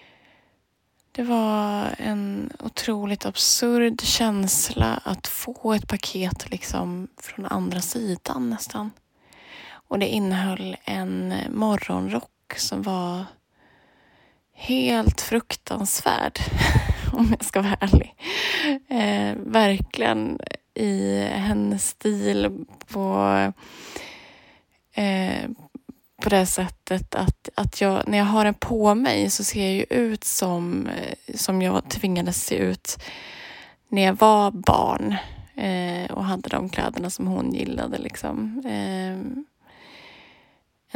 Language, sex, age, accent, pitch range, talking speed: Swedish, female, 20-39, native, 175-225 Hz, 105 wpm